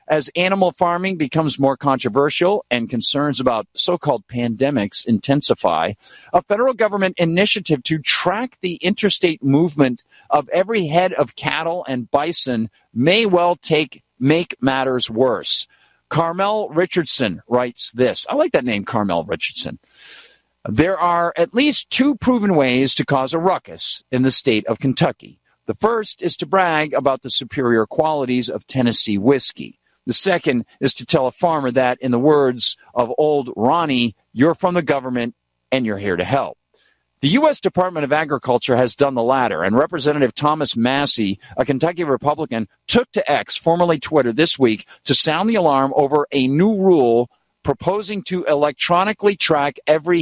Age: 50-69